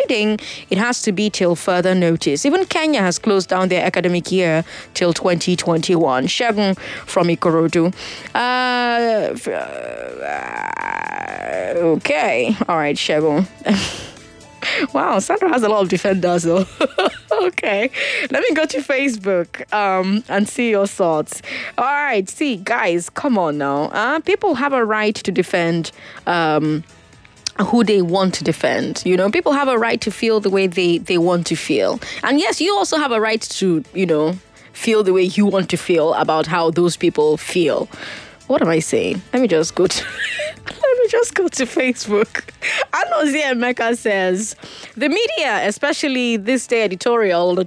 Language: English